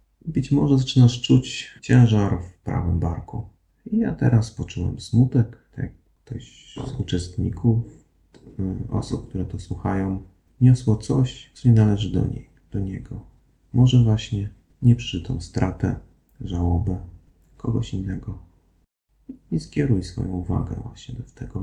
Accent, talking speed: native, 130 wpm